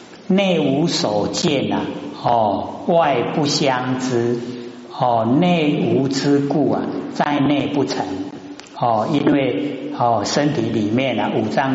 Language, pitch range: Chinese, 120-165 Hz